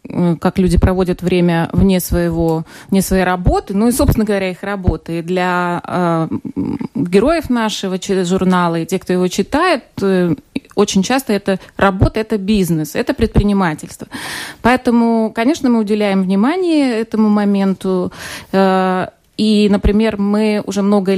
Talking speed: 130 wpm